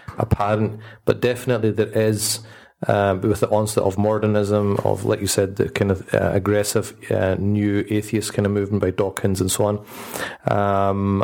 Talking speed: 170 wpm